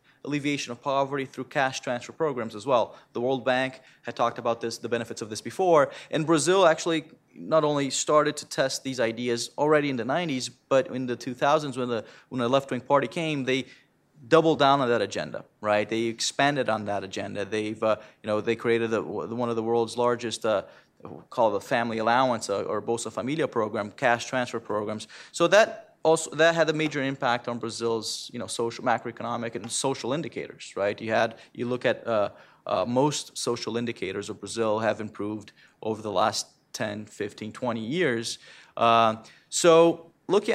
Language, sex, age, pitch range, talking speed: English, male, 30-49, 115-140 Hz, 185 wpm